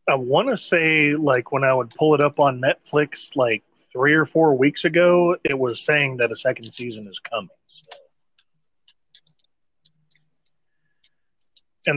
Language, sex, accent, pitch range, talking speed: English, male, American, 130-160 Hz, 145 wpm